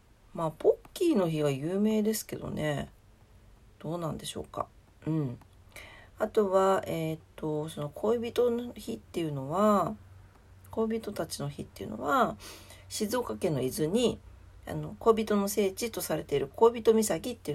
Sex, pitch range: female, 135-220 Hz